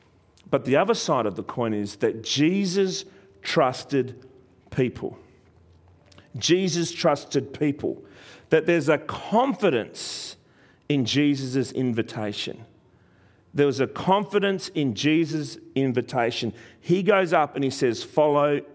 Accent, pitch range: Australian, 120-185 Hz